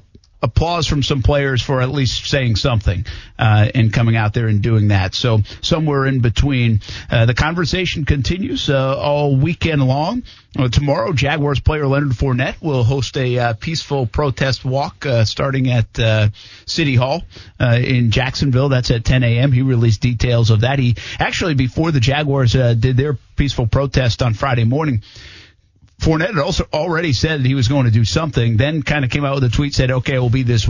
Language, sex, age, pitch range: English, male, 50-69, 110-140 Hz